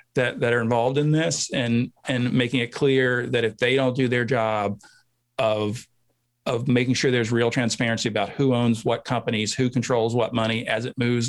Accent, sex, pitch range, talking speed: American, male, 115-135 Hz, 195 wpm